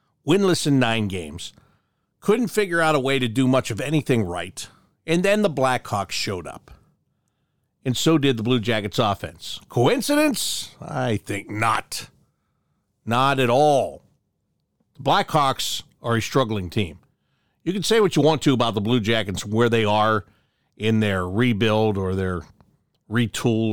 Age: 50-69